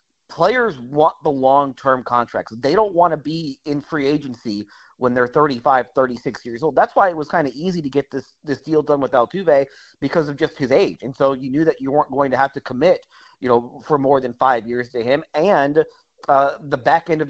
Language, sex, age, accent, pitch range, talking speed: English, male, 40-59, American, 130-155 Hz, 230 wpm